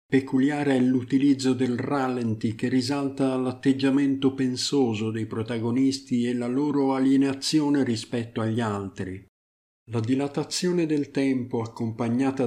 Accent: native